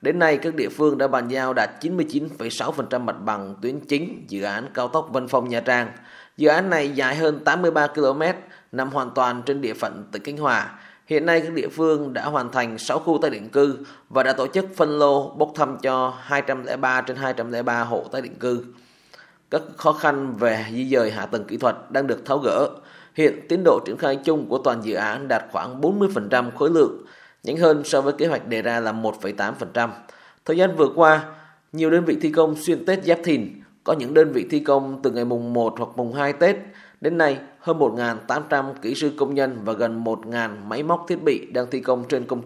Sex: male